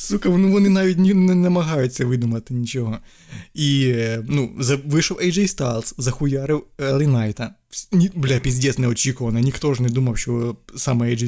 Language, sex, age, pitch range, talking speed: Ukrainian, male, 20-39, 120-155 Hz, 150 wpm